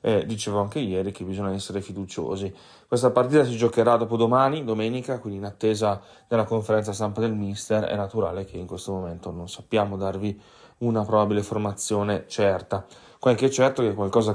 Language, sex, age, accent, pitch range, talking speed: Italian, male, 30-49, native, 100-115 Hz, 170 wpm